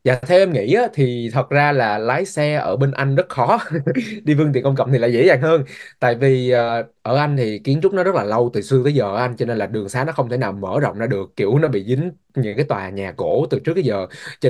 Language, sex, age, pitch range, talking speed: Vietnamese, male, 20-39, 120-150 Hz, 300 wpm